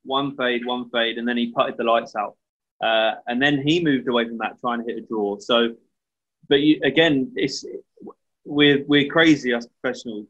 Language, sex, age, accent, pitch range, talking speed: English, male, 20-39, British, 115-135 Hz, 200 wpm